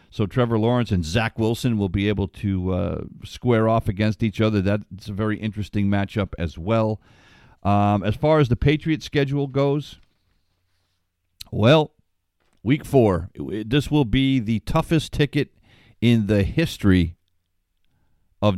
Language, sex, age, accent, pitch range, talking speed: English, male, 50-69, American, 95-120 Hz, 140 wpm